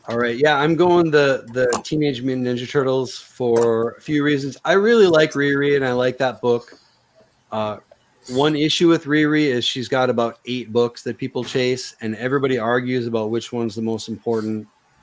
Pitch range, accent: 110-135 Hz, American